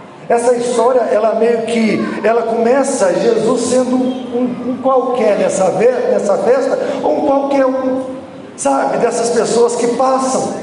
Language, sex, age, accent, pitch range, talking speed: Portuguese, male, 40-59, Brazilian, 220-260 Hz, 135 wpm